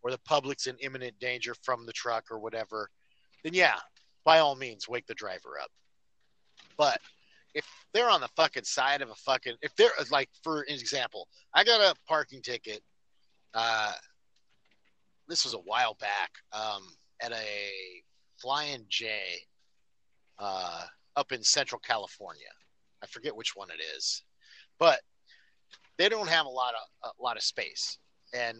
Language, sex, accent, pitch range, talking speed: English, male, American, 120-160 Hz, 155 wpm